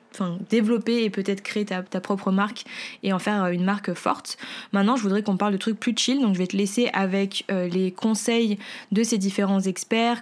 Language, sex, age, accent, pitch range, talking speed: French, female, 20-39, French, 185-210 Hz, 215 wpm